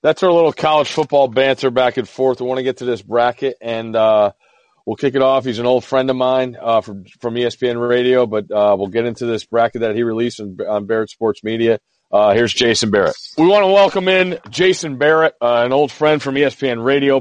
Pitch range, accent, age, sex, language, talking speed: 120-145 Hz, American, 40-59, male, English, 225 wpm